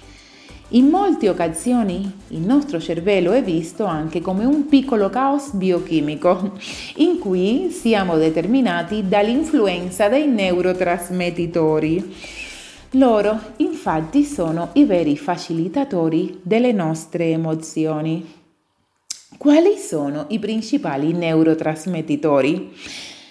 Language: Italian